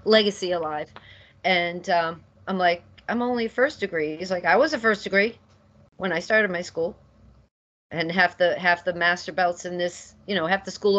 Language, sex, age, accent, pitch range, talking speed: English, female, 40-59, American, 165-210 Hz, 195 wpm